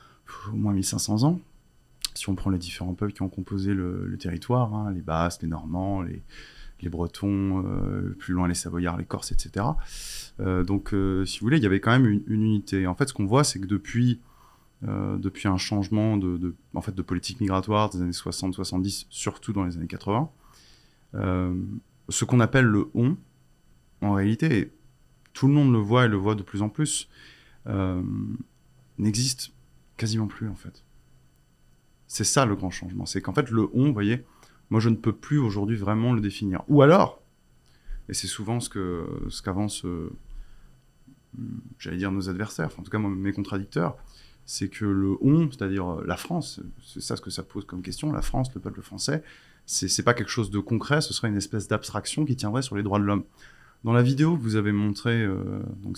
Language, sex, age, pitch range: French, male, 30-49, 90-115 Hz